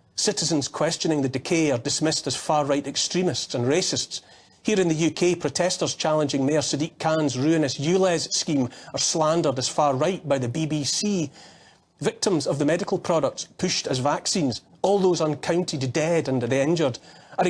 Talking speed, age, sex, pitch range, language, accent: 155 wpm, 40-59, male, 140-180 Hz, English, British